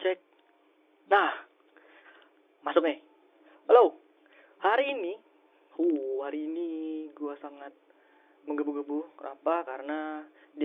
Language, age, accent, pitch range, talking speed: Indonesian, 20-39, native, 140-155 Hz, 95 wpm